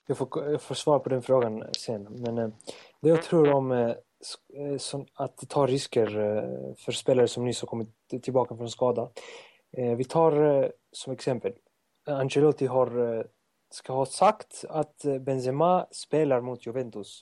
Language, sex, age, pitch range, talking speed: Swedish, male, 30-49, 115-140 Hz, 125 wpm